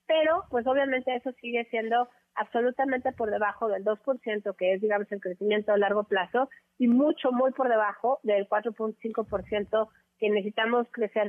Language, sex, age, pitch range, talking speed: Spanish, female, 30-49, 200-245 Hz, 155 wpm